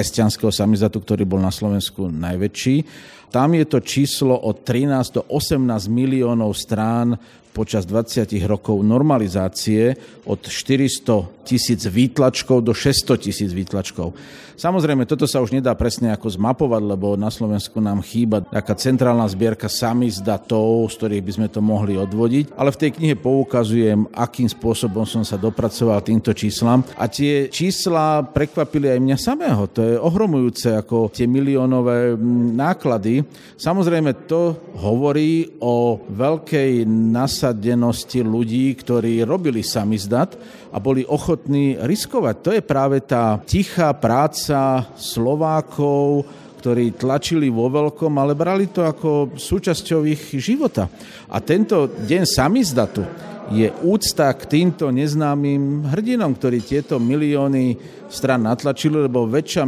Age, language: 50-69, Slovak